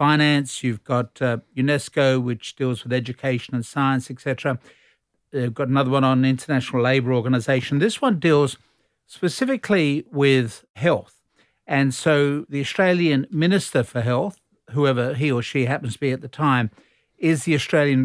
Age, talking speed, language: 60-79, 155 wpm, English